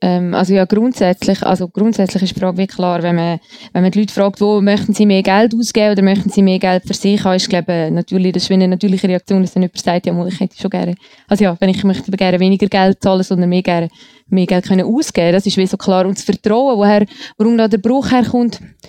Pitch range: 195-225 Hz